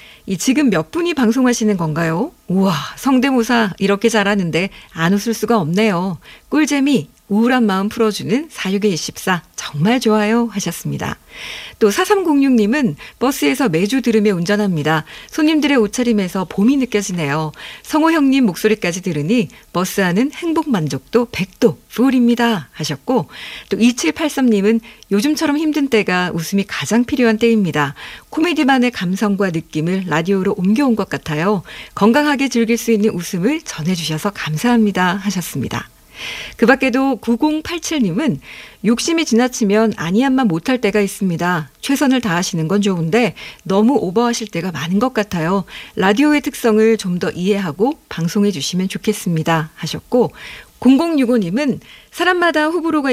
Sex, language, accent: female, Korean, native